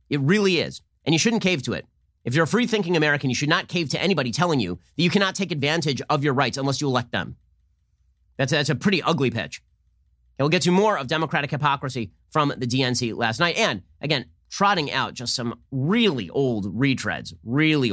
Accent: American